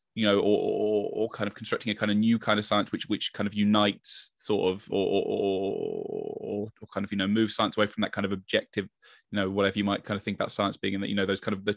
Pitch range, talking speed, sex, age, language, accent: 100-115 Hz, 275 wpm, male, 10-29, English, British